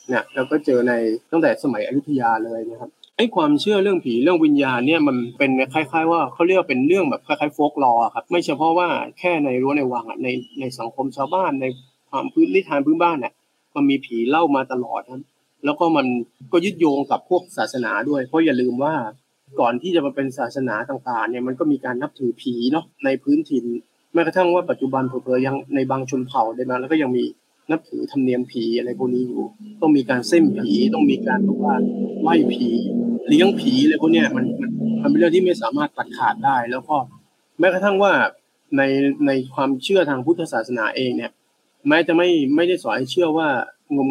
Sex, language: male, Thai